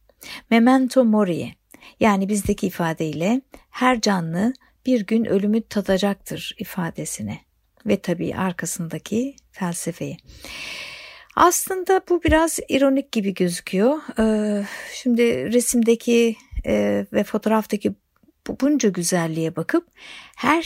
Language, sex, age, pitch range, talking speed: Turkish, female, 60-79, 190-255 Hz, 95 wpm